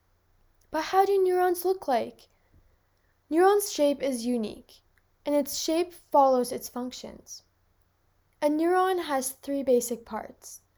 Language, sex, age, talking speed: English, female, 10-29, 120 wpm